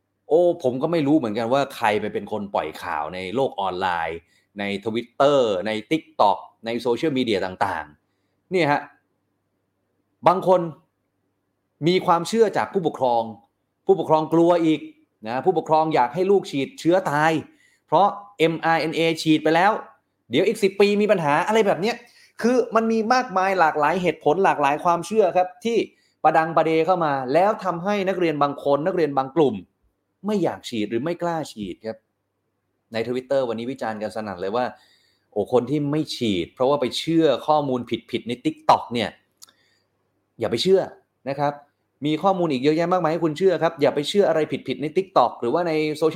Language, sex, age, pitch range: Thai, male, 30-49, 115-175 Hz